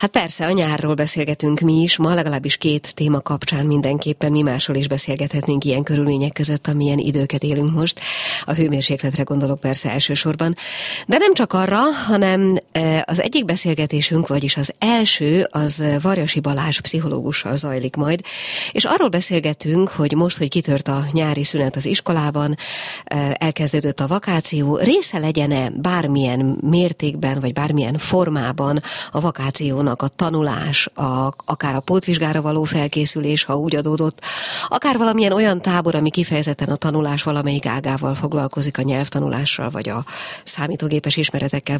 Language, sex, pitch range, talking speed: Hungarian, female, 140-165 Hz, 140 wpm